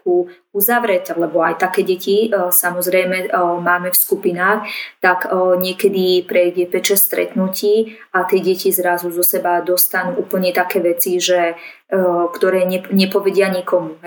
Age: 20-39